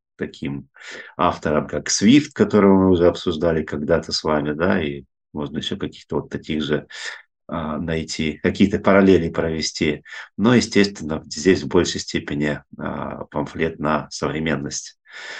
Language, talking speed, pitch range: Russian, 135 wpm, 75-95 Hz